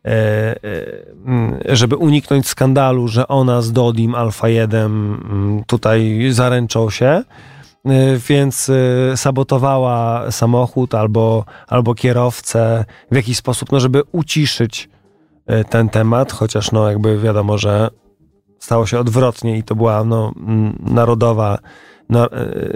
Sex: male